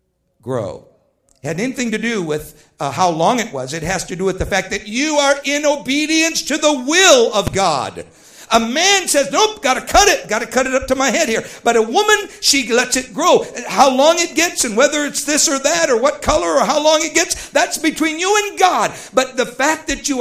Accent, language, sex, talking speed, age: American, English, male, 240 wpm, 60-79